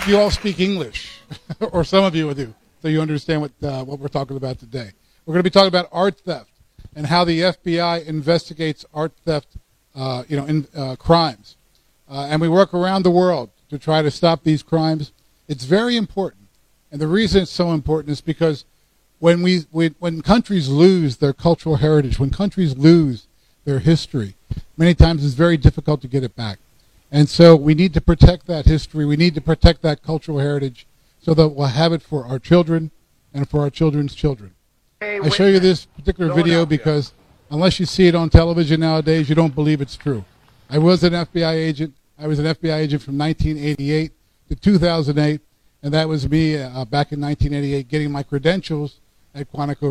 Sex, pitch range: male, 140-170 Hz